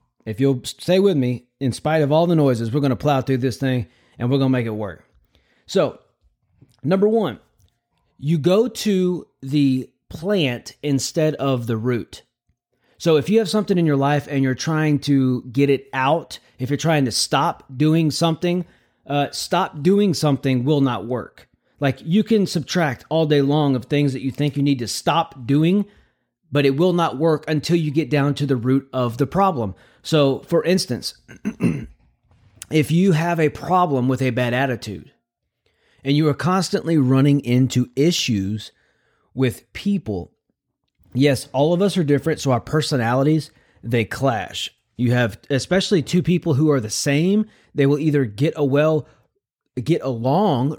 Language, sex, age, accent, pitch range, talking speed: English, male, 30-49, American, 125-160 Hz, 175 wpm